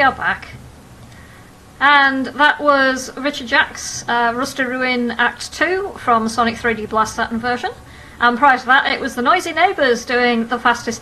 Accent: British